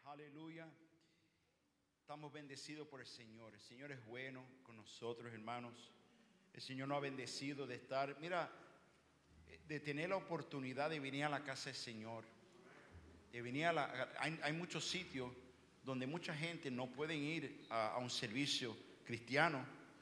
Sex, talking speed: male, 155 wpm